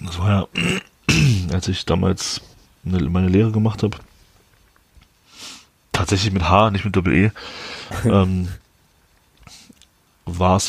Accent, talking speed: German, 105 wpm